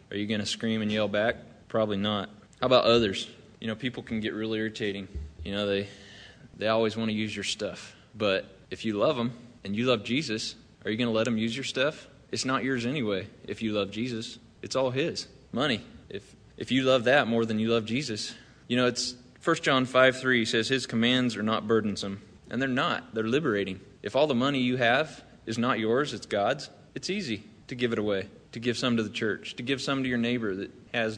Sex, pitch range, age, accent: male, 100-120 Hz, 20-39, American